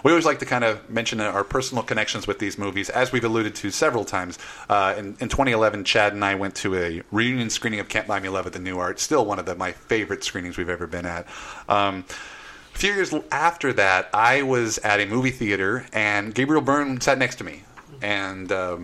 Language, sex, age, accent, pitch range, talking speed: English, male, 30-49, American, 100-130 Hz, 225 wpm